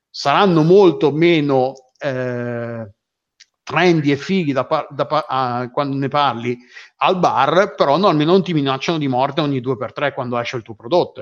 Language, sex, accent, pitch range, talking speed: Italian, male, native, 130-175 Hz, 180 wpm